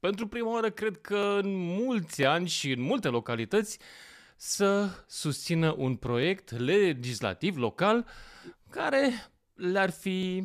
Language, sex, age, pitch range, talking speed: Romanian, male, 30-49, 125-195 Hz, 120 wpm